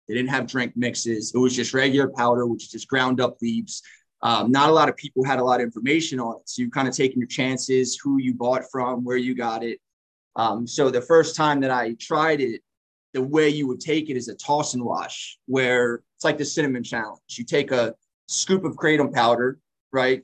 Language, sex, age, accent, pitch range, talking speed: English, male, 20-39, American, 125-140 Hz, 230 wpm